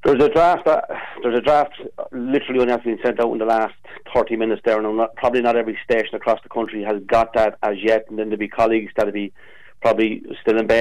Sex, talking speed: male, 250 wpm